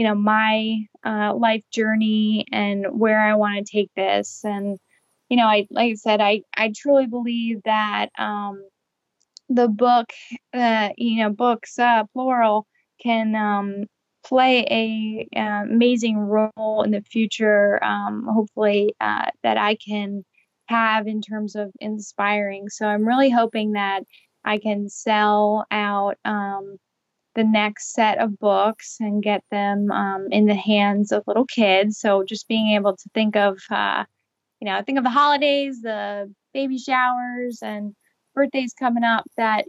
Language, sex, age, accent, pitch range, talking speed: English, female, 10-29, American, 205-225 Hz, 155 wpm